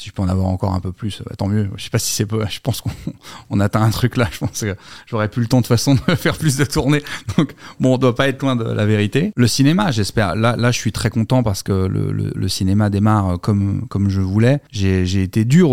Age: 30-49